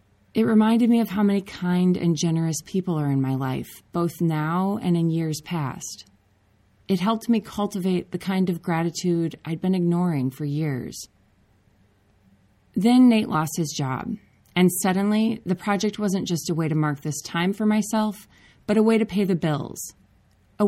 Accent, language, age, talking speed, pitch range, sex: American, English, 30-49, 175 wpm, 135-200 Hz, female